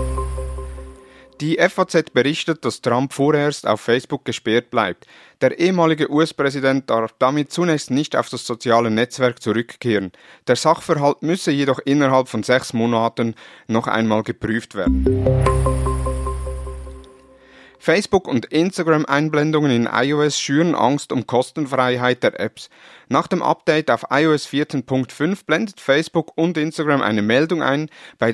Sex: male